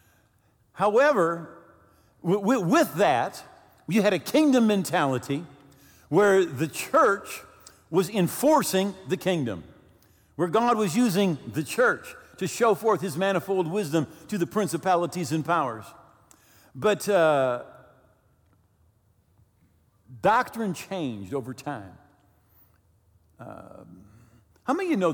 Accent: American